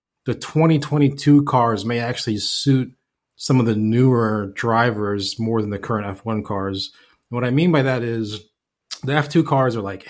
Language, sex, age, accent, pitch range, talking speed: English, male, 30-49, American, 110-135 Hz, 165 wpm